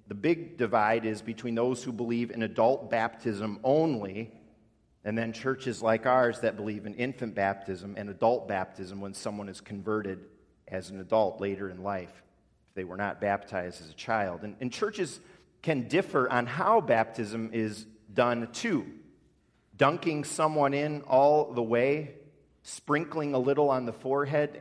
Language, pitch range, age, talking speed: English, 105-140 Hz, 40-59, 160 wpm